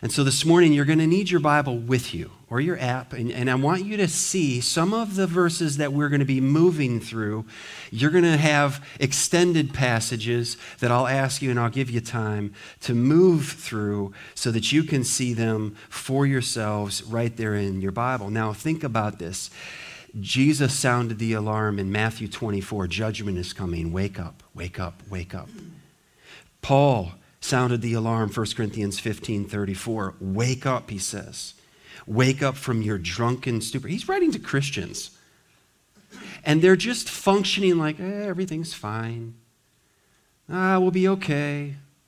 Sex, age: male, 40-59